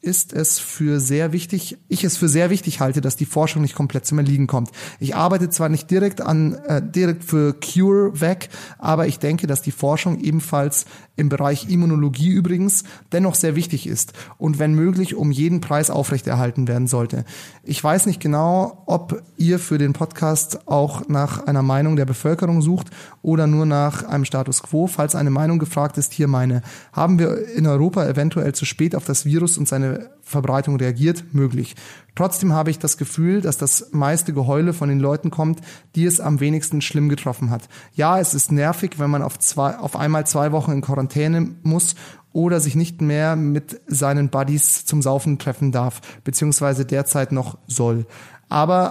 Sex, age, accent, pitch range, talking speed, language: male, 30-49, German, 140-170 Hz, 180 wpm, German